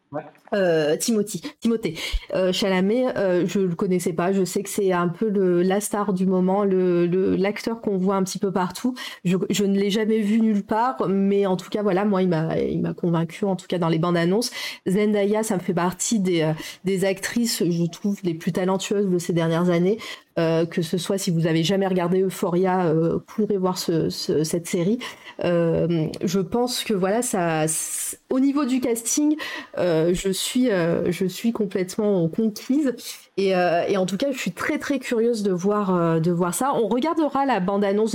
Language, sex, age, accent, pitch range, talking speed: French, female, 30-49, French, 175-215 Hz, 205 wpm